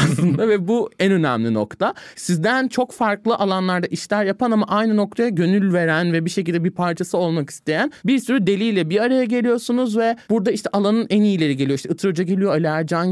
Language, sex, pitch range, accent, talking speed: Turkish, male, 170-230 Hz, native, 185 wpm